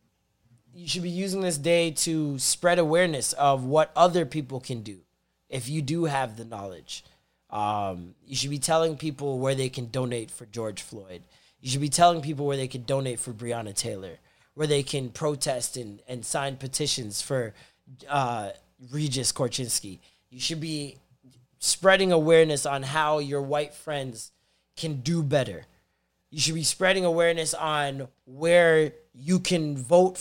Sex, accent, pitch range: male, American, 130-165 Hz